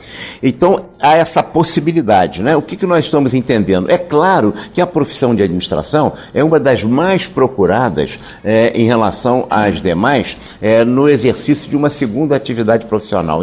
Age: 60-79